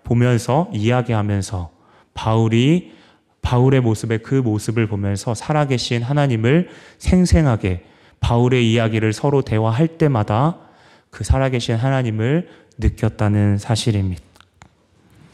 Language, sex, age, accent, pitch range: Korean, male, 30-49, native, 115-145 Hz